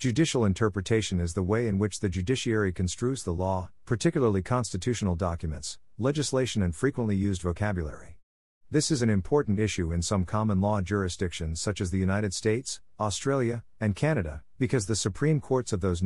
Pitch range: 90-115 Hz